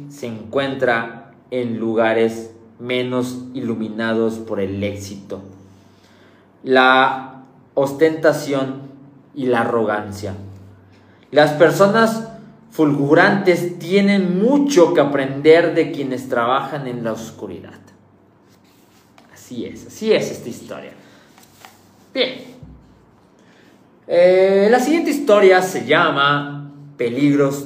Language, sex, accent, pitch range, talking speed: Spanish, male, Mexican, 115-165 Hz, 90 wpm